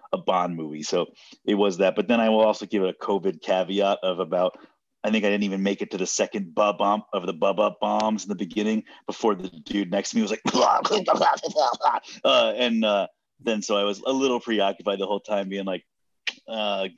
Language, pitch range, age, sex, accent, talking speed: English, 90-115 Hz, 30-49, male, American, 220 wpm